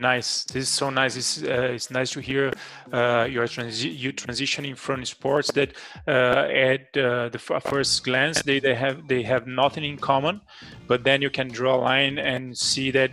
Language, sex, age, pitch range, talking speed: Spanish, male, 30-49, 120-140 Hz, 200 wpm